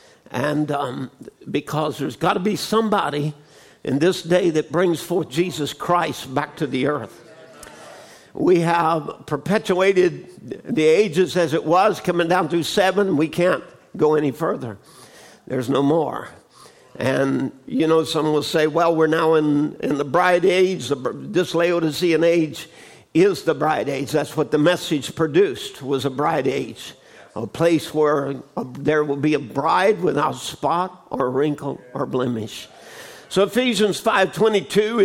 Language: English